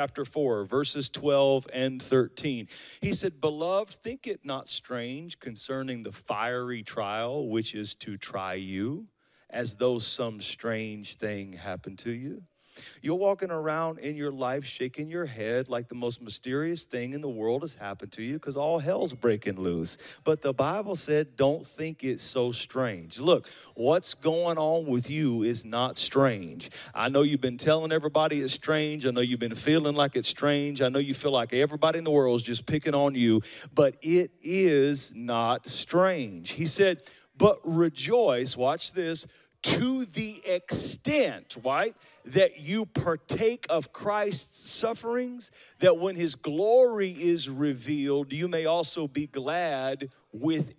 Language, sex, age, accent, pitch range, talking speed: English, male, 40-59, American, 125-170 Hz, 160 wpm